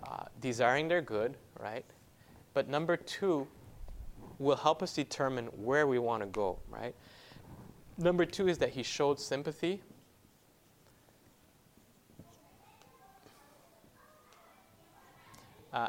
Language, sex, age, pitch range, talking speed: English, male, 20-39, 110-140 Hz, 100 wpm